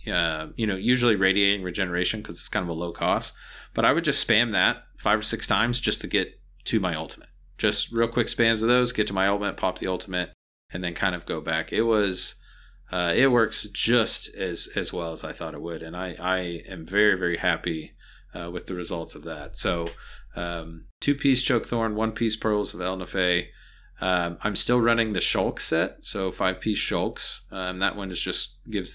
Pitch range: 90-115 Hz